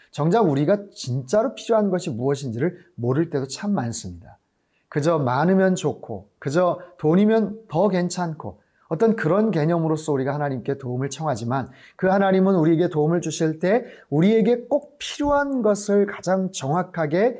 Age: 30-49